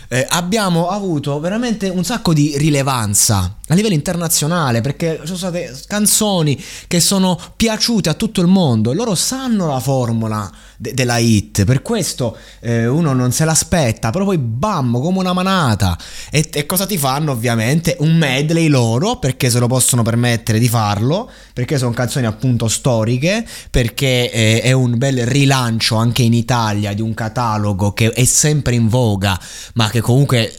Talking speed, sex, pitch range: 165 wpm, male, 105-140 Hz